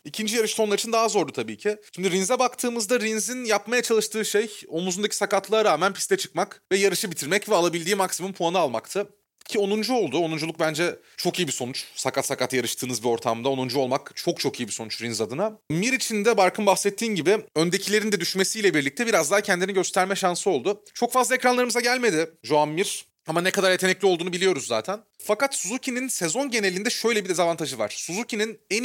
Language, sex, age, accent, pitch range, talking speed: Turkish, male, 30-49, native, 160-210 Hz, 185 wpm